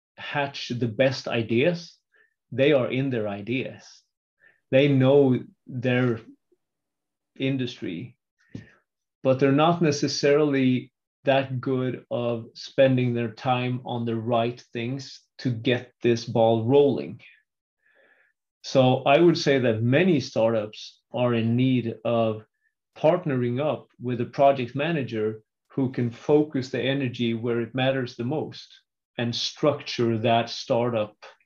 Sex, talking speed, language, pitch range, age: male, 120 wpm, English, 115-135 Hz, 30-49